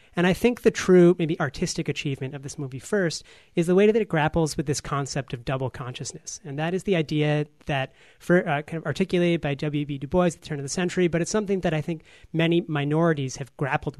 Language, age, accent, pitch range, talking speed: English, 30-49, American, 145-170 Hz, 235 wpm